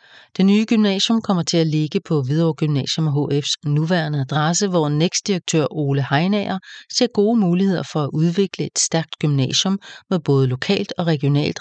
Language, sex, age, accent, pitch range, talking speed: English, female, 40-59, Danish, 145-185 Hz, 165 wpm